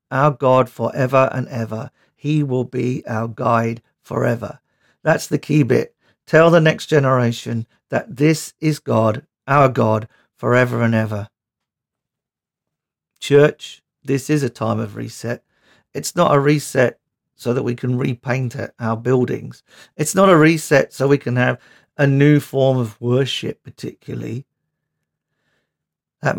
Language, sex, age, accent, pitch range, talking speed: English, male, 50-69, British, 115-145 Hz, 140 wpm